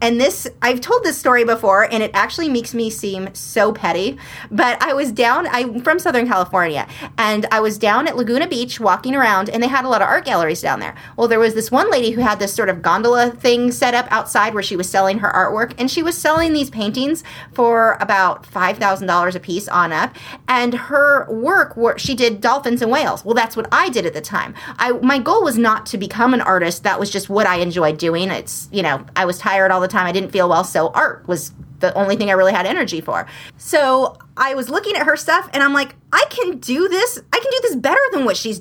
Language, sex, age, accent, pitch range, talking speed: English, female, 30-49, American, 195-270 Hz, 240 wpm